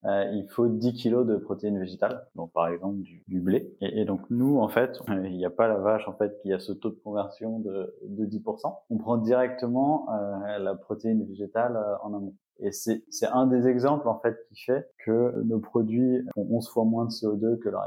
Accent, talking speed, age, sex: French, 230 wpm, 20-39, male